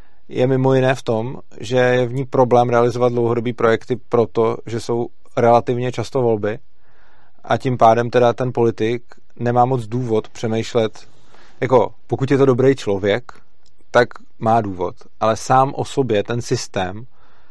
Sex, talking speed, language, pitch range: male, 150 wpm, Czech, 115-125 Hz